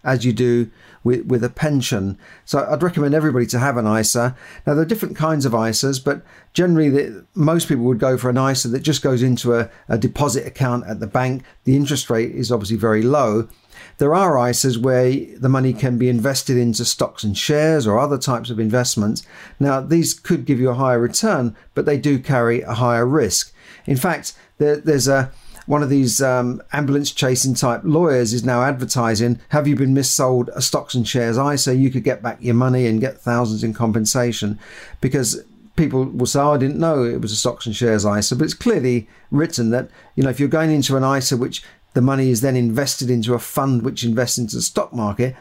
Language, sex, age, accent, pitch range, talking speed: English, male, 50-69, British, 120-140 Hz, 210 wpm